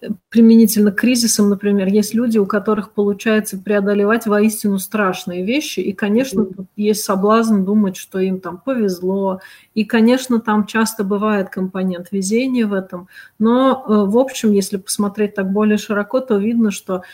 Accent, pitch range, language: native, 195-220 Hz, Russian